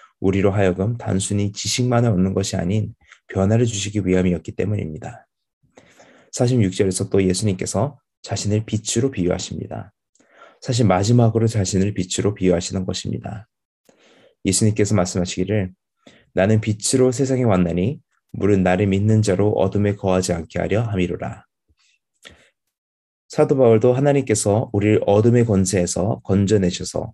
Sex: male